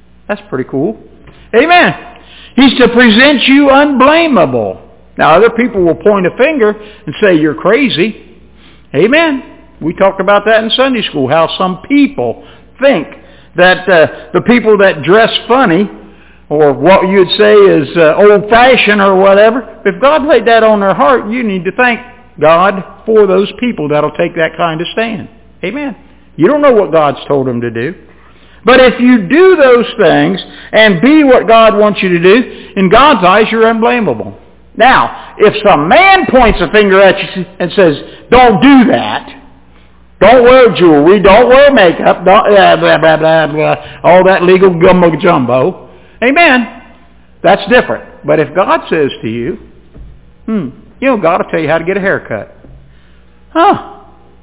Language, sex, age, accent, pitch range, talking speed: English, male, 60-79, American, 175-250 Hz, 170 wpm